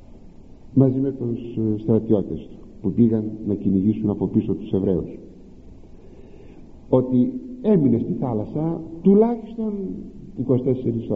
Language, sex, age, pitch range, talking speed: Greek, male, 60-79, 100-160 Hz, 100 wpm